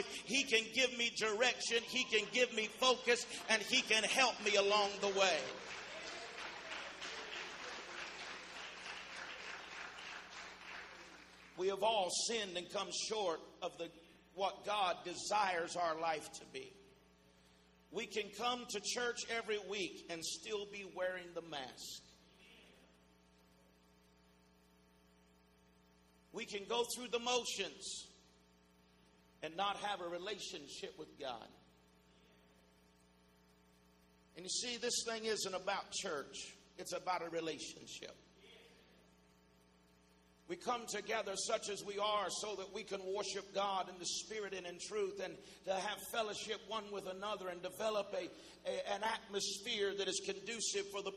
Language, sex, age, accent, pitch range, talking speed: English, male, 50-69, American, 130-215 Hz, 125 wpm